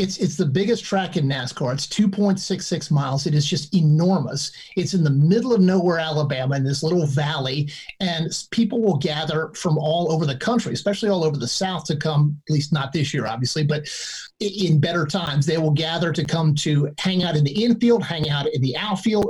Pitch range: 155-200 Hz